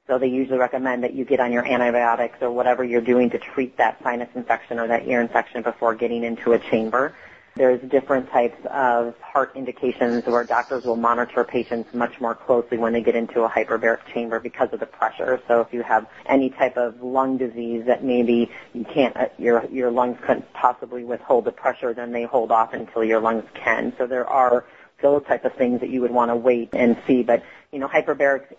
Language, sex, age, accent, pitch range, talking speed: English, female, 30-49, American, 115-130 Hz, 210 wpm